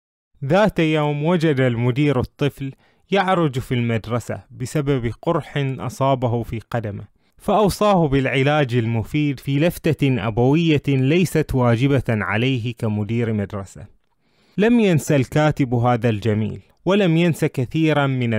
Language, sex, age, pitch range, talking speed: Arabic, male, 20-39, 120-150 Hz, 110 wpm